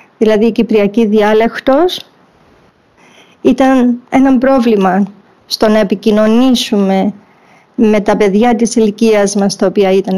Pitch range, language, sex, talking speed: 210-265 Hz, Greek, female, 110 wpm